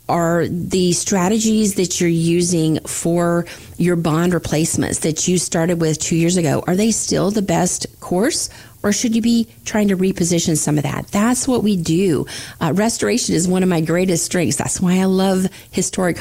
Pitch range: 150-180 Hz